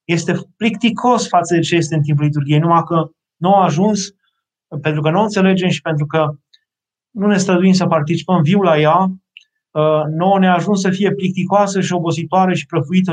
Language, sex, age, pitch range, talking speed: Romanian, male, 20-39, 145-185 Hz, 185 wpm